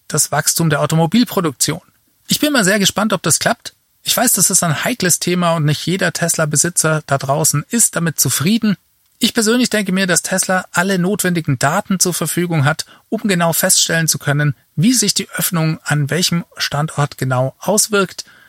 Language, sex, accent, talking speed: German, male, German, 175 wpm